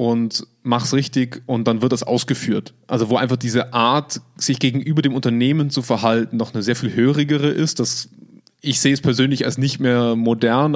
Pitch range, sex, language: 115-135 Hz, male, German